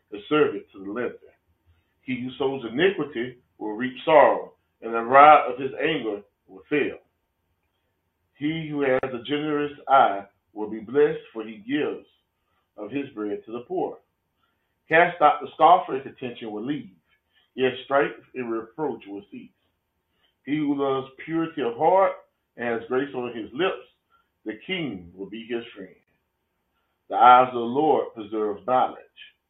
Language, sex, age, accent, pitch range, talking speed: English, male, 30-49, American, 110-155 Hz, 155 wpm